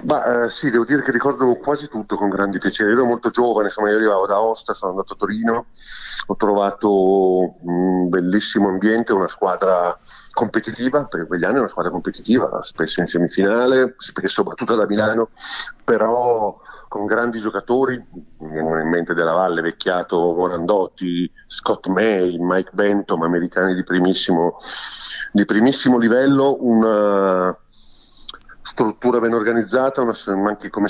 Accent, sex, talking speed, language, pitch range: native, male, 145 wpm, Italian, 95-115 Hz